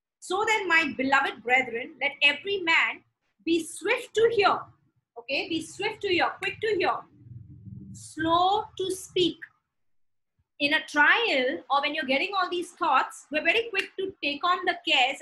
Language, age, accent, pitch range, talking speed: English, 30-49, Indian, 275-360 Hz, 160 wpm